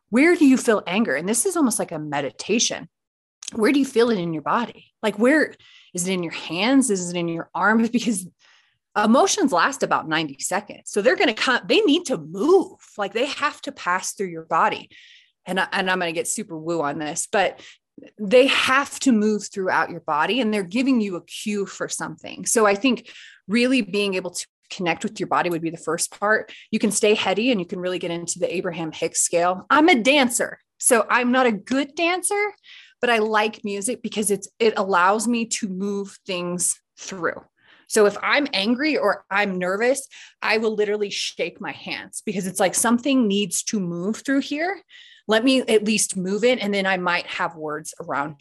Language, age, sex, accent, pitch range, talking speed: English, 30-49, female, American, 180-250 Hz, 210 wpm